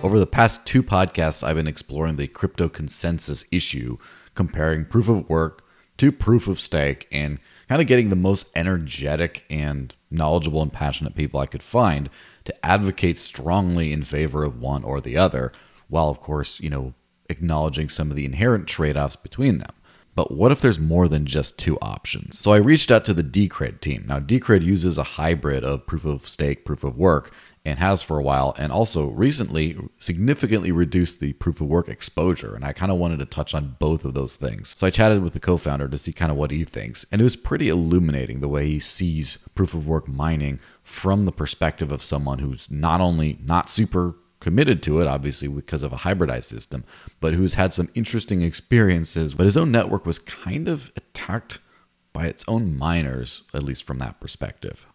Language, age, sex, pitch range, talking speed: English, 30-49, male, 75-95 Hz, 200 wpm